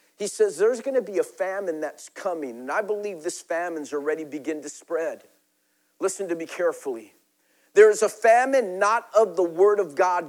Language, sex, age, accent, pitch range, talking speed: English, male, 50-69, American, 220-280 Hz, 190 wpm